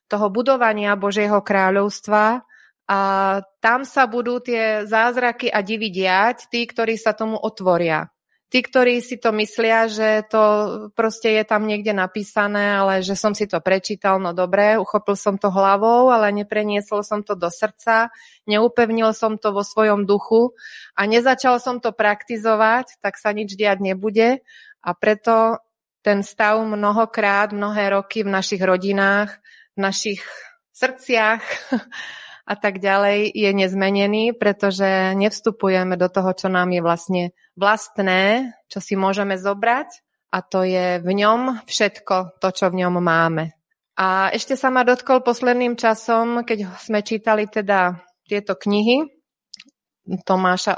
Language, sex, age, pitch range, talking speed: Slovak, female, 30-49, 195-225 Hz, 140 wpm